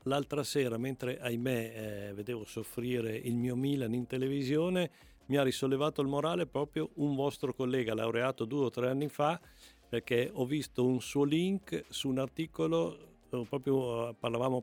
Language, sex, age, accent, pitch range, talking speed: Italian, male, 50-69, native, 115-140 Hz, 155 wpm